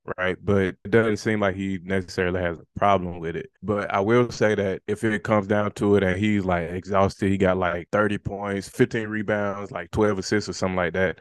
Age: 20-39